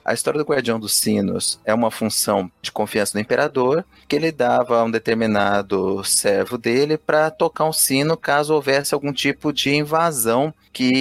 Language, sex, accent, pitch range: Portuguese, male, Brazilian, 115-150 Hz